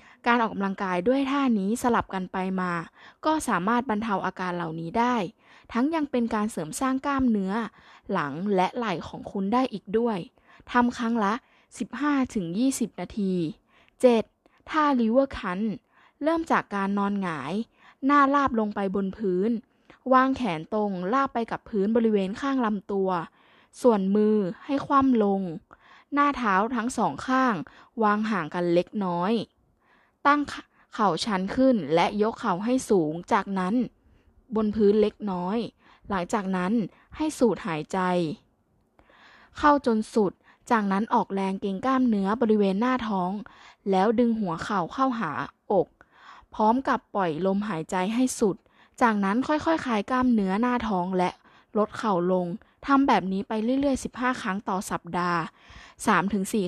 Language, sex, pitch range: Thai, female, 190-250 Hz